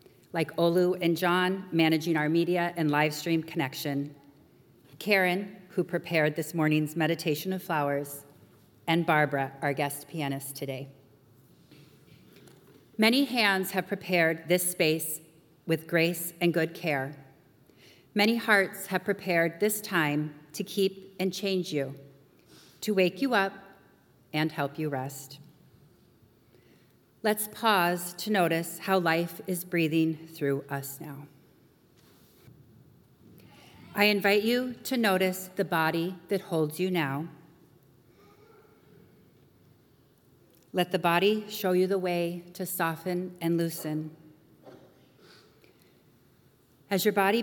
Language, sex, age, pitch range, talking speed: English, female, 40-59, 150-190 Hz, 115 wpm